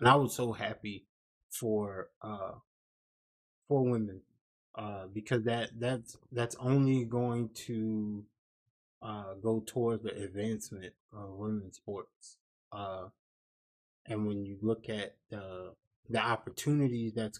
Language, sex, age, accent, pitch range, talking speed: English, male, 20-39, American, 100-115 Hz, 120 wpm